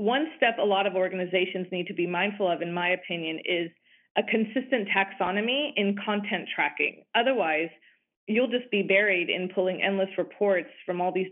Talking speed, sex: 175 wpm, female